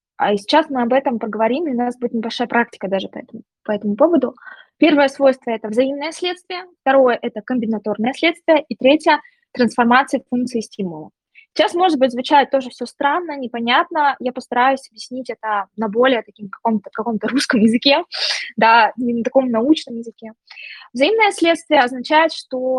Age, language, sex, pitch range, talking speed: 20-39, Russian, female, 220-275 Hz, 165 wpm